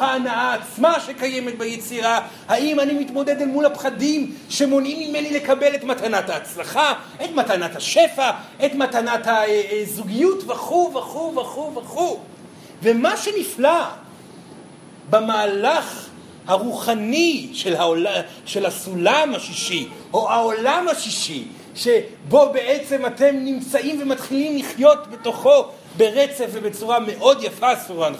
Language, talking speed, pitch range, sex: Hebrew, 105 wpm, 230-295 Hz, male